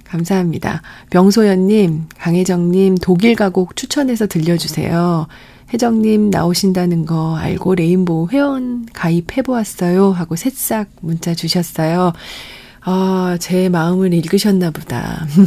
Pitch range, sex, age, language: 170-210 Hz, female, 30-49, Korean